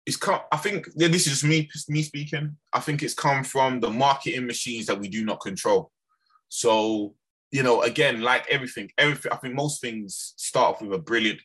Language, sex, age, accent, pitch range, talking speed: English, male, 20-39, British, 120-155 Hz, 210 wpm